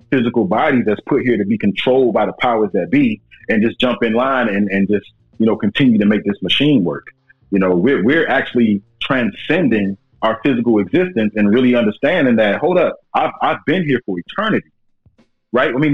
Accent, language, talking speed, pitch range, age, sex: American, English, 200 wpm, 100-120 Hz, 30-49, male